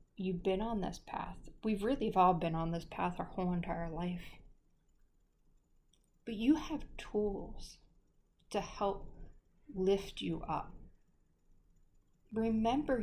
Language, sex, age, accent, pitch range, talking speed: English, female, 30-49, American, 170-205 Hz, 120 wpm